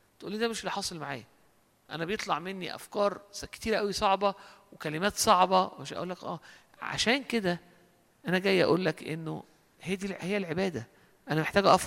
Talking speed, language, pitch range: 165 wpm, Arabic, 175-235 Hz